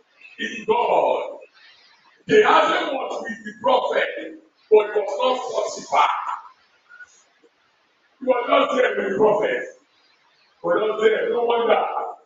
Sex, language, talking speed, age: male, English, 115 wpm, 60-79